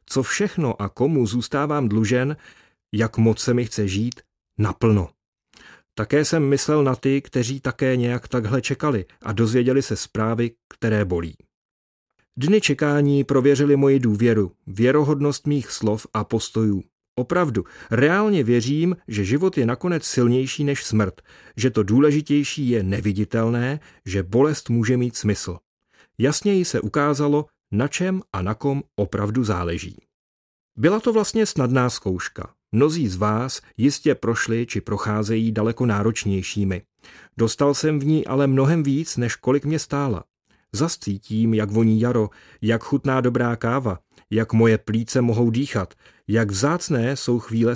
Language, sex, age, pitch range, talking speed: Czech, male, 40-59, 110-140 Hz, 140 wpm